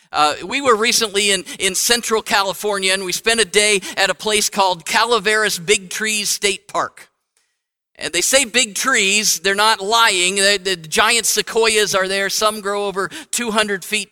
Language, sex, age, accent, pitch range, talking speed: English, male, 50-69, American, 170-215 Hz, 170 wpm